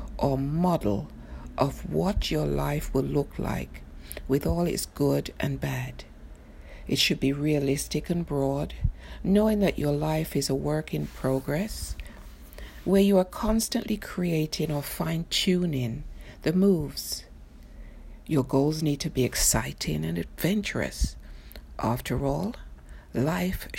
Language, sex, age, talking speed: English, female, 60-79, 130 wpm